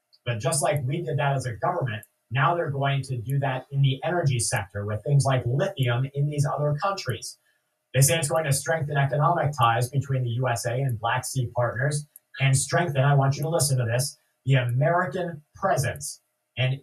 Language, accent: English, American